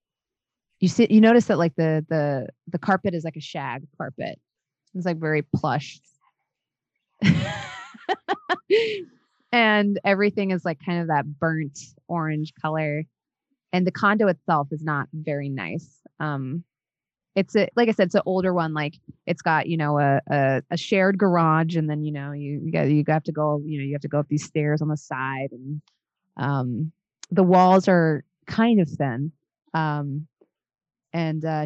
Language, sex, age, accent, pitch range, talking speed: English, female, 20-39, American, 150-180 Hz, 175 wpm